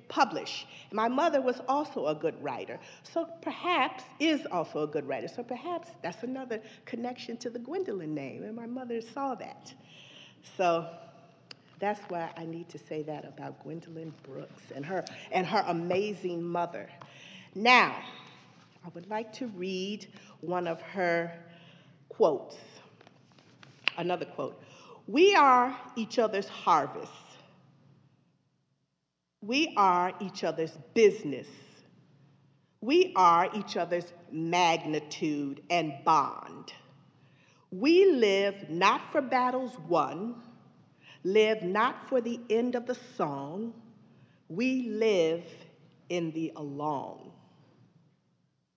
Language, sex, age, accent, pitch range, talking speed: English, female, 50-69, American, 160-230 Hz, 115 wpm